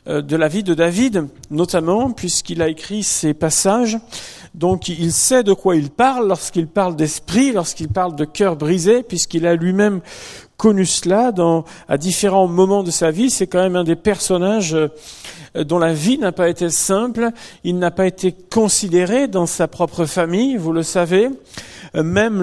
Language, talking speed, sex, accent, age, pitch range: French, 170 wpm, male, French, 40-59, 165-205 Hz